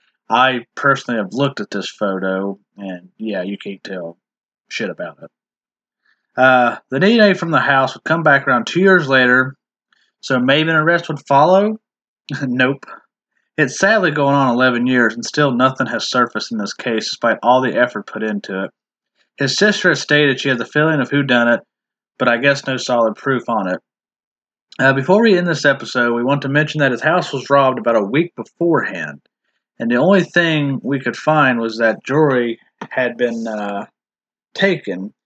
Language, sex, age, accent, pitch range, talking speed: English, male, 30-49, American, 120-155 Hz, 185 wpm